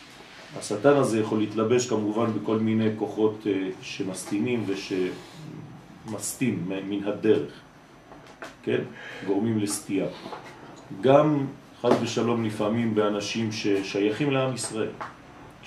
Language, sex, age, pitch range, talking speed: French, male, 40-59, 105-130 Hz, 90 wpm